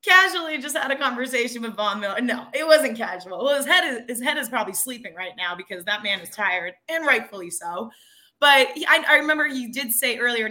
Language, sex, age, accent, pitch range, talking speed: English, female, 20-39, American, 205-270 Hz, 230 wpm